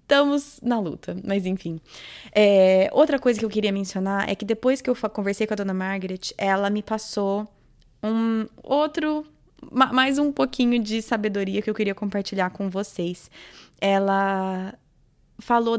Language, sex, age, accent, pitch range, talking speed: Portuguese, female, 20-39, Brazilian, 195-230 Hz, 160 wpm